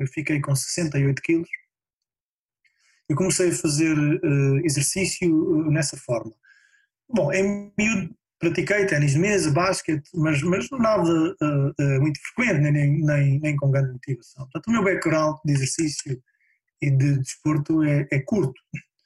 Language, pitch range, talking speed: Portuguese, 140-185 Hz, 150 wpm